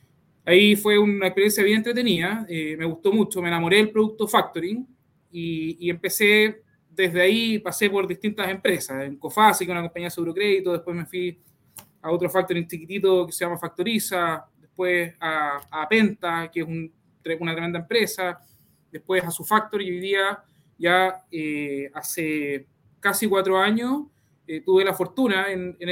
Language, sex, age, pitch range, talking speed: Spanish, male, 20-39, 170-205 Hz, 165 wpm